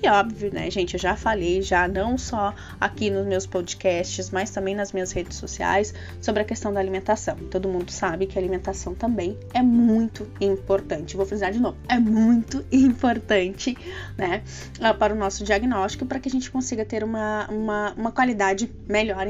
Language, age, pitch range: Portuguese, 20-39, 195-245 Hz